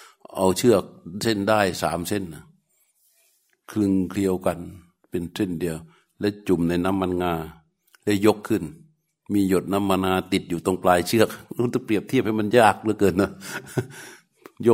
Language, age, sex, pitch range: Thai, 60-79, male, 90-105 Hz